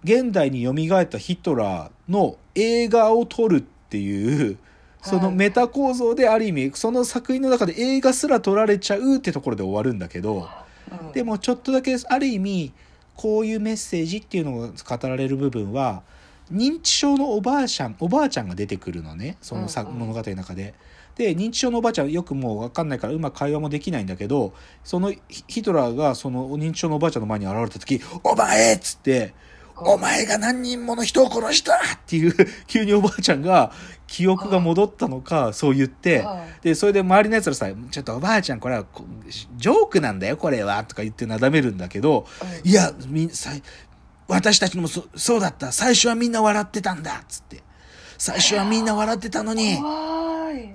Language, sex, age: Japanese, male, 40-59